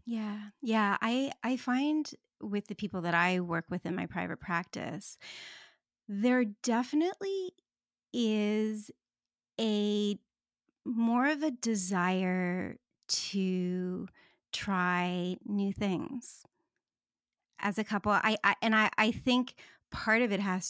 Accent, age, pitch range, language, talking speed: American, 30-49, 185-235 Hz, English, 120 wpm